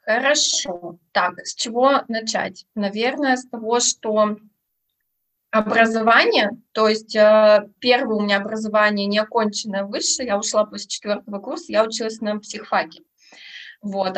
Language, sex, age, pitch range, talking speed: Russian, female, 20-39, 210-250 Hz, 125 wpm